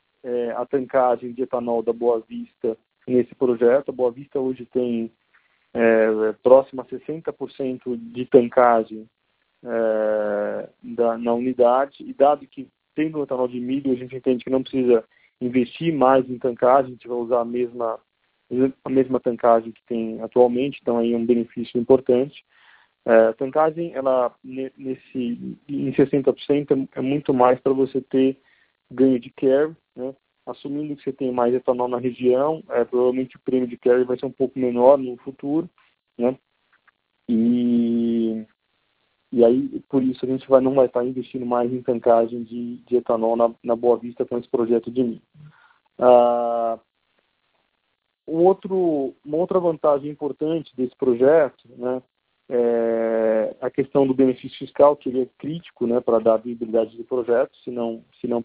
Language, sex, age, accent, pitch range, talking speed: Portuguese, male, 20-39, Brazilian, 120-135 Hz, 155 wpm